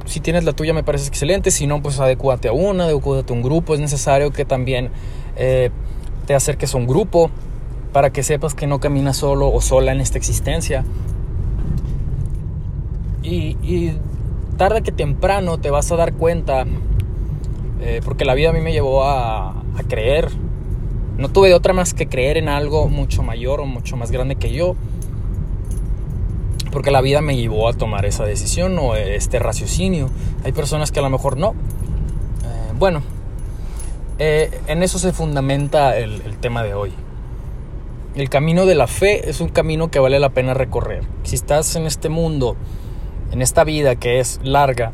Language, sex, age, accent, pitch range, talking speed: Spanish, male, 20-39, Mexican, 115-150 Hz, 175 wpm